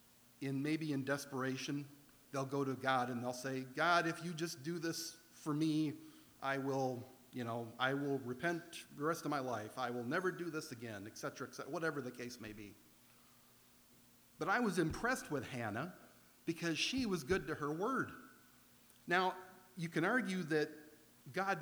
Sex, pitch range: male, 130-165 Hz